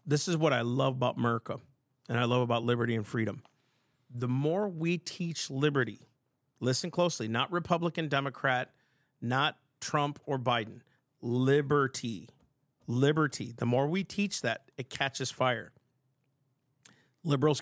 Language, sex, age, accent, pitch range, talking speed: English, male, 40-59, American, 125-155 Hz, 135 wpm